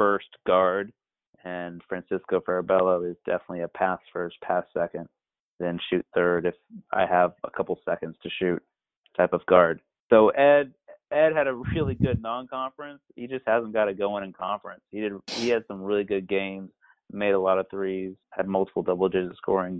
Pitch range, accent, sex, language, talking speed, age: 95-110 Hz, American, male, English, 180 wpm, 30-49